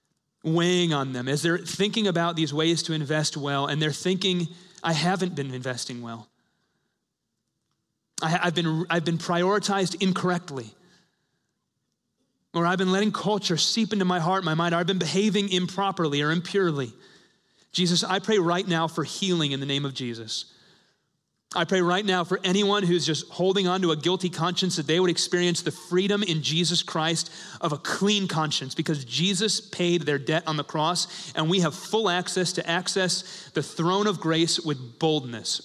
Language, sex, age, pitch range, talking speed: English, male, 30-49, 140-180 Hz, 175 wpm